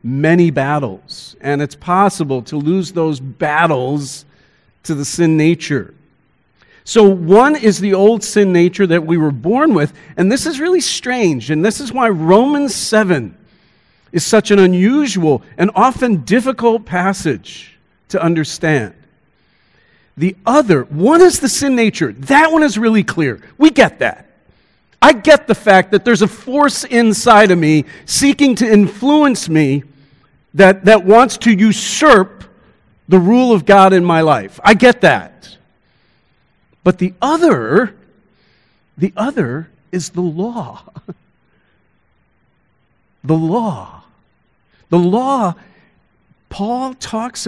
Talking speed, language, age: 135 wpm, English, 50-69